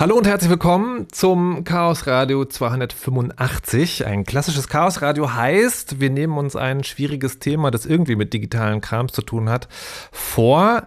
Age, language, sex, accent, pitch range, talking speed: 30-49, German, male, German, 110-145 Hz, 155 wpm